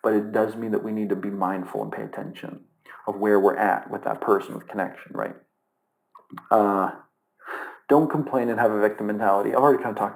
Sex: male